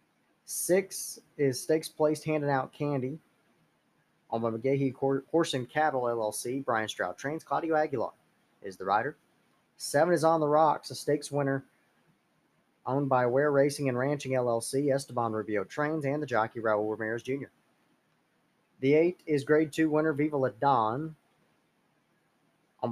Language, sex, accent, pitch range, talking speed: English, male, American, 115-145 Hz, 150 wpm